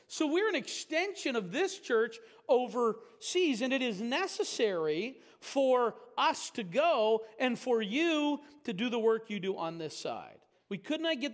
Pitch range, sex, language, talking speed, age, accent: 215-320 Hz, male, English, 170 wpm, 40-59, American